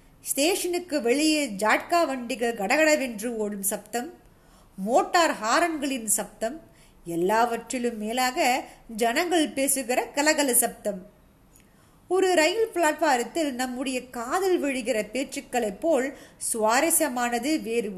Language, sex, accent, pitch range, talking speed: Tamil, female, native, 225-290 Hz, 85 wpm